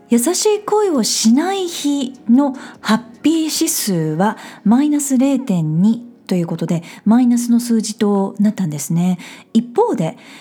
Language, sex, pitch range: Japanese, female, 195-275 Hz